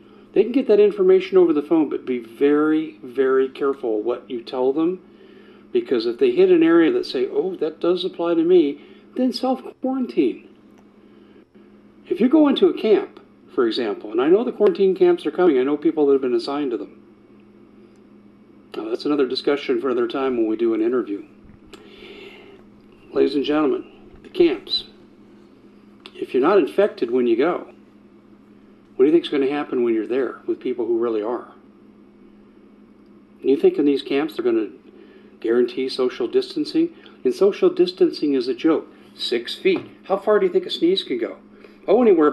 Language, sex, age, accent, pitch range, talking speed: English, male, 50-69, American, 310-380 Hz, 185 wpm